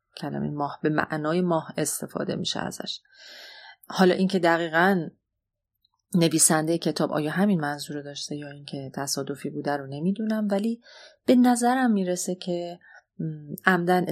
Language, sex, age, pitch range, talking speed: Persian, female, 30-49, 160-195 Hz, 120 wpm